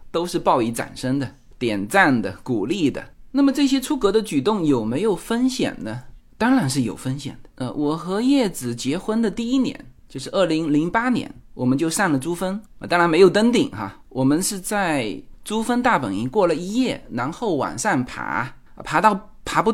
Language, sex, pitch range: Chinese, male, 155-255 Hz